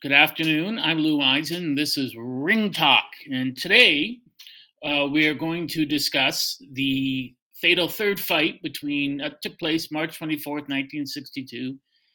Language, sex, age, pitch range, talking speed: English, male, 50-69, 135-175 Hz, 140 wpm